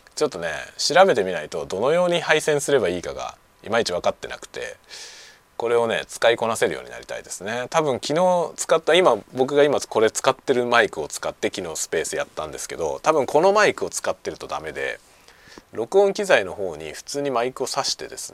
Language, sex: Japanese, male